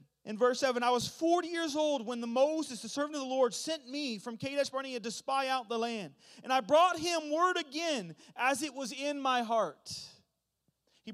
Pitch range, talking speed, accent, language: 230-300 Hz, 210 wpm, American, English